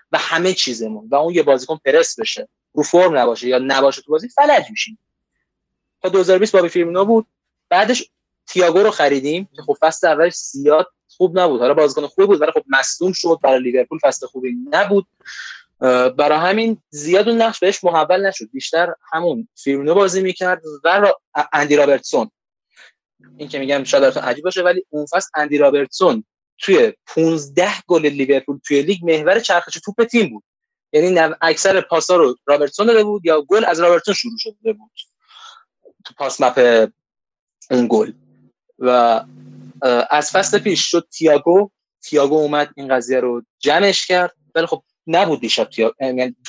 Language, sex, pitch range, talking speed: Persian, male, 140-205 Hz, 155 wpm